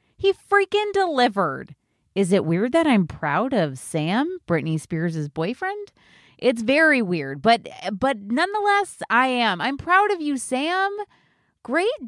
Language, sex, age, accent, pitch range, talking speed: English, female, 30-49, American, 175-265 Hz, 140 wpm